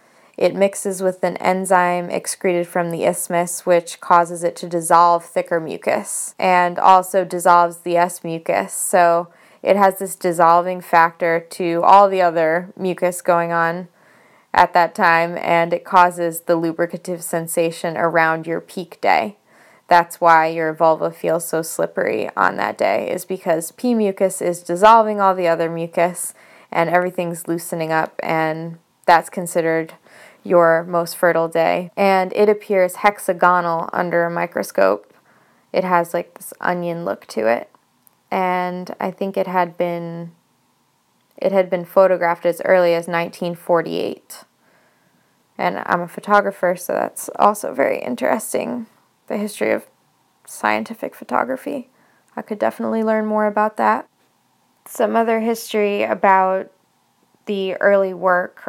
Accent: American